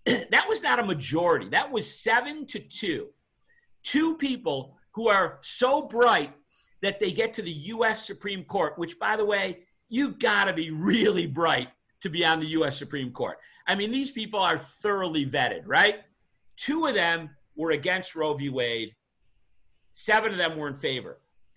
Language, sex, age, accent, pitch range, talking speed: English, male, 50-69, American, 145-220 Hz, 175 wpm